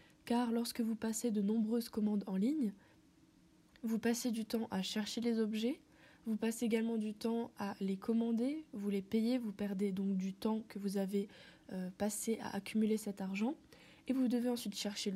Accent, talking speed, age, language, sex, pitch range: French, 185 wpm, 20-39, French, female, 205-235 Hz